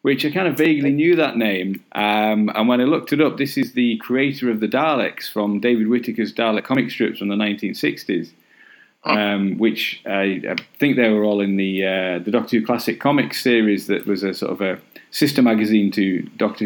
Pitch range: 100-115 Hz